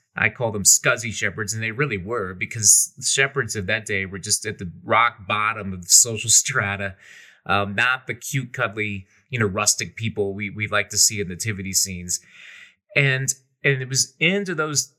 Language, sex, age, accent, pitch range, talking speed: English, male, 30-49, American, 105-150 Hz, 185 wpm